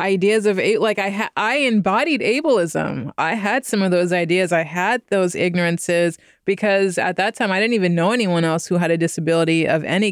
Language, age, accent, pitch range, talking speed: English, 20-39, American, 175-205 Hz, 195 wpm